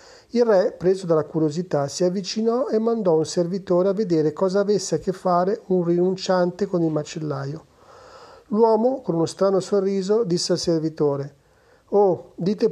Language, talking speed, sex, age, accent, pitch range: Italian, 155 wpm, male, 40-59, native, 160-205 Hz